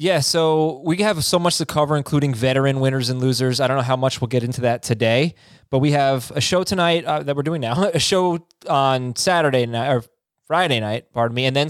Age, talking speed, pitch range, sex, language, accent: 20-39, 235 wpm, 130-155 Hz, male, English, American